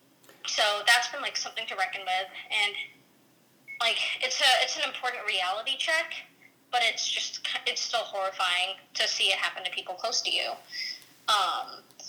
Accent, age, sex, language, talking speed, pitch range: American, 20-39, female, English, 165 wpm, 195-265 Hz